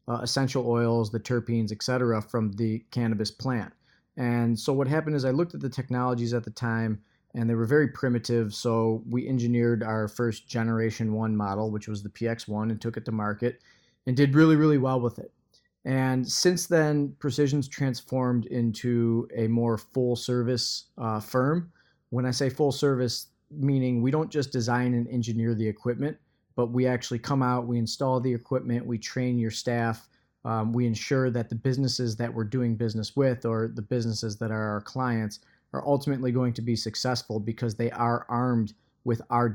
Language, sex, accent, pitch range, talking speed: English, male, American, 115-125 Hz, 185 wpm